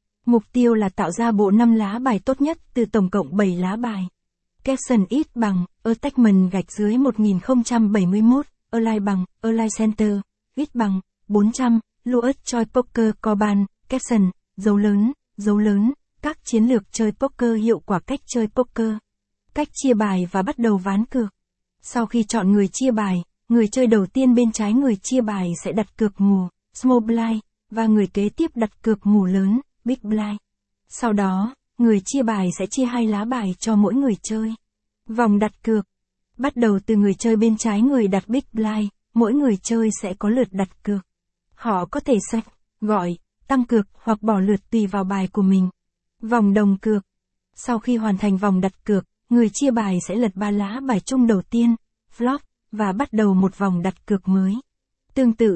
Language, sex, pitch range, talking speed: Vietnamese, female, 200-240 Hz, 185 wpm